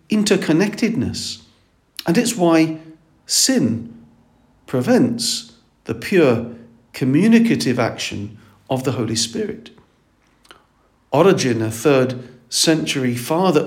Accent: British